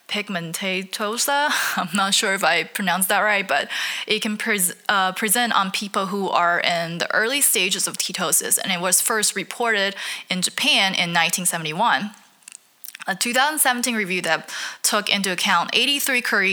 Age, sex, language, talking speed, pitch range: 20-39, female, English, 155 wpm, 175-220 Hz